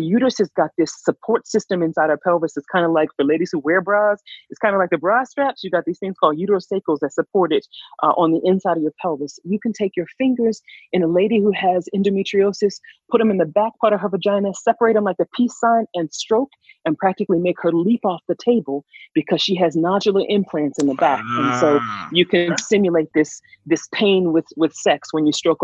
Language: English